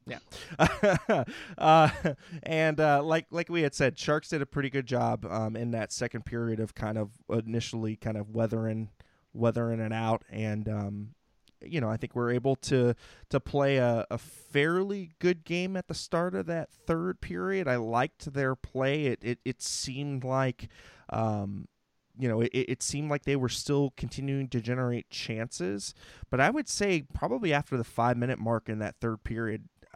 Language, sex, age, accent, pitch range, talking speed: English, male, 20-39, American, 115-140 Hz, 180 wpm